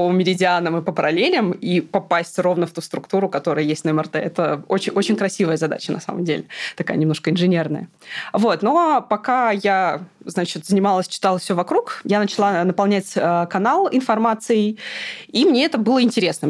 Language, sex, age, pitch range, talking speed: Russian, female, 20-39, 170-210 Hz, 175 wpm